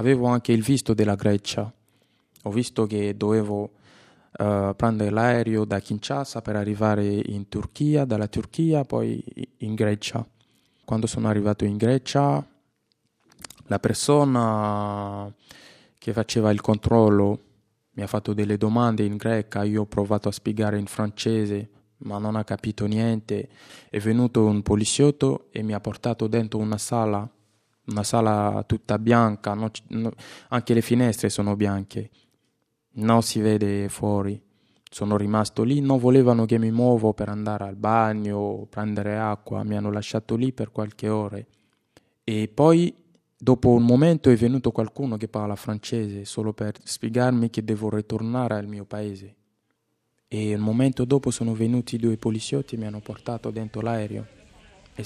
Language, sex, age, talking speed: Italian, male, 20-39, 150 wpm